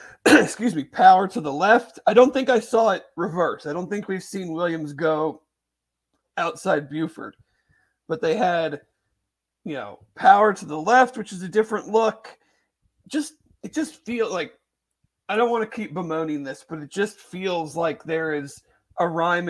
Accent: American